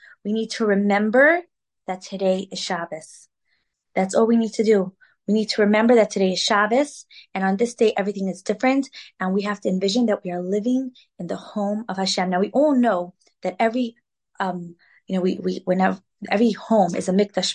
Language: English